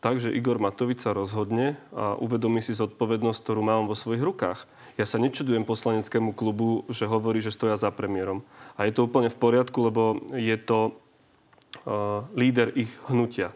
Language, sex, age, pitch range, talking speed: Slovak, male, 30-49, 115-140 Hz, 165 wpm